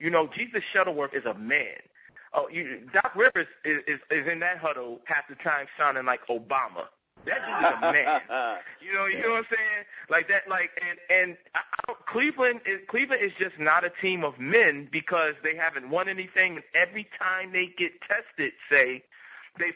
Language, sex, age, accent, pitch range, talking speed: English, male, 30-49, American, 150-200 Hz, 195 wpm